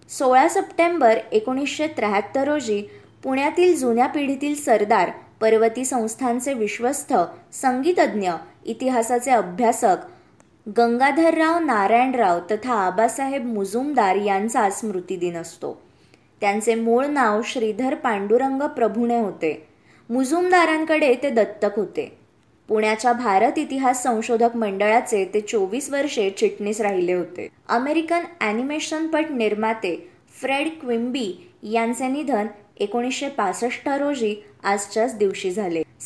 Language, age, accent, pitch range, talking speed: Marathi, 20-39, native, 210-275 Hz, 90 wpm